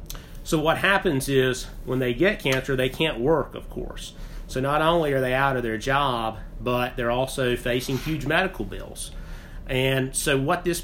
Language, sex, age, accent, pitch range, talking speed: English, male, 30-49, American, 115-130 Hz, 185 wpm